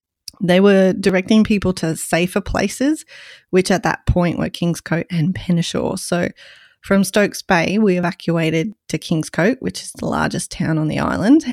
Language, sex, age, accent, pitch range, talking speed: English, female, 30-49, Australian, 165-205 Hz, 160 wpm